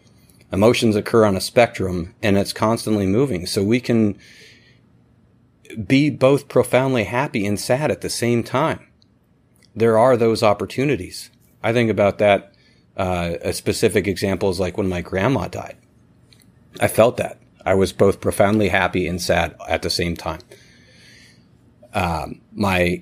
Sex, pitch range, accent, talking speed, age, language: male, 95-110 Hz, American, 145 wpm, 30-49, English